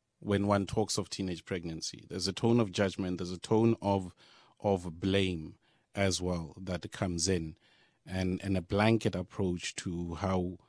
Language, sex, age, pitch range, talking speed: English, male, 30-49, 90-105 Hz, 165 wpm